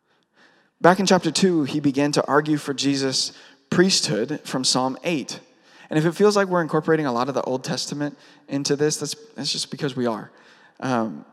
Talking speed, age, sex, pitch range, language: 190 wpm, 20-39, male, 140-170 Hz, English